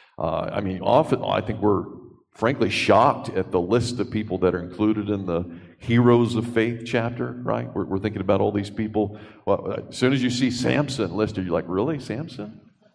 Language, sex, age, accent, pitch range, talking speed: English, male, 40-59, American, 100-135 Hz, 195 wpm